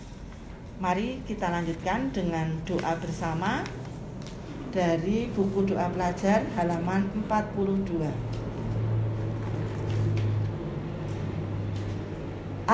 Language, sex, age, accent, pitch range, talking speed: Indonesian, female, 40-59, native, 170-200 Hz, 55 wpm